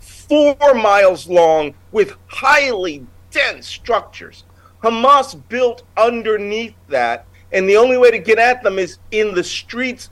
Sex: male